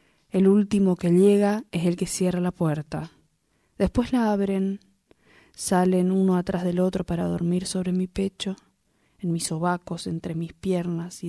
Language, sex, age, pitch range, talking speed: Spanish, female, 20-39, 170-190 Hz, 160 wpm